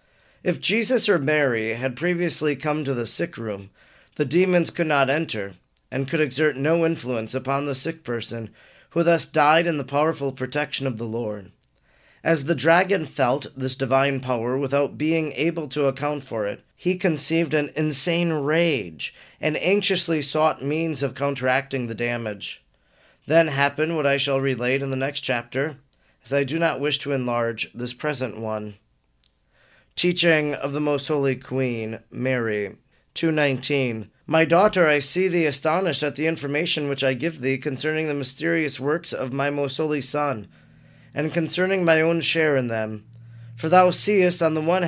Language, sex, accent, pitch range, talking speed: English, male, American, 130-160 Hz, 165 wpm